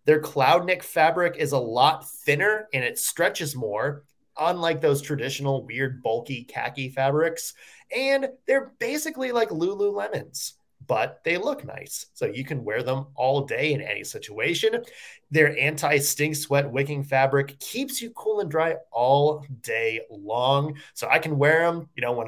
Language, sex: English, male